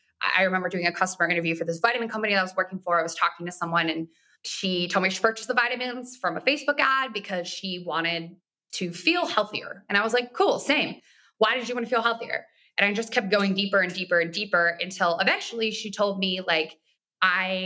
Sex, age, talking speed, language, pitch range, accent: female, 20-39, 230 wpm, English, 180-230 Hz, American